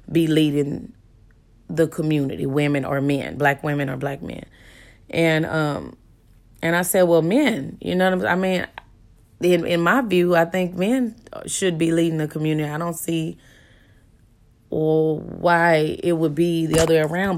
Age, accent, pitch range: 20-39, American, 140-170 Hz